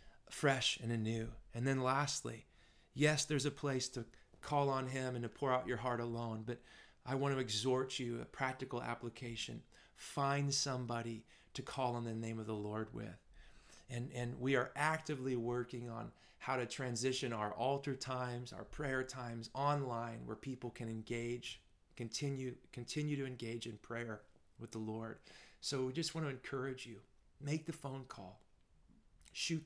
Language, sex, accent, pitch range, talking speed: English, male, American, 115-140 Hz, 170 wpm